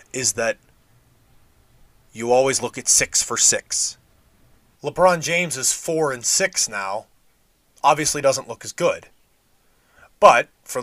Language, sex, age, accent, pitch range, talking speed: English, male, 20-39, American, 115-155 Hz, 125 wpm